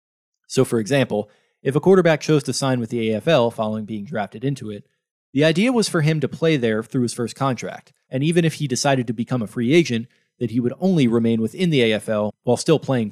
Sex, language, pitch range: male, English, 115-150 Hz